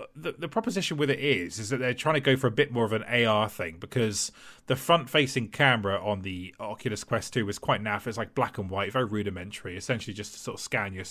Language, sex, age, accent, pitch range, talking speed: English, male, 30-49, British, 105-140 Hz, 255 wpm